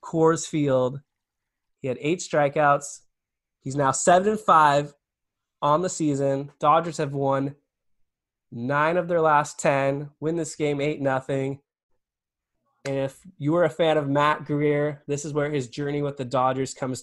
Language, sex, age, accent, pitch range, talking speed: English, male, 20-39, American, 125-155 Hz, 160 wpm